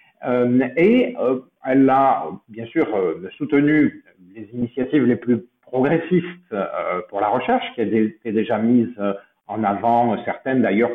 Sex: male